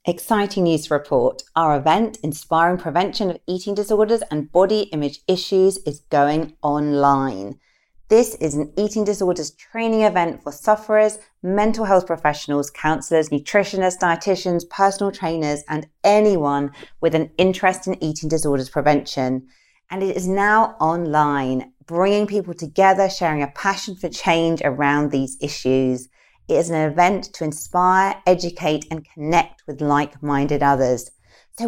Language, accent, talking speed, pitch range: English, British, 140 wpm, 145-190 Hz